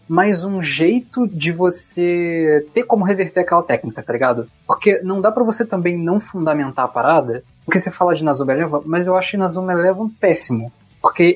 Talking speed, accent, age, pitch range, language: 185 wpm, Brazilian, 20-39, 145-195 Hz, Portuguese